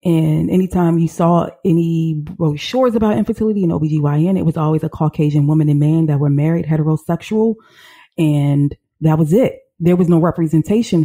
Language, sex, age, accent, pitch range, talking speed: English, female, 30-49, American, 150-175 Hz, 165 wpm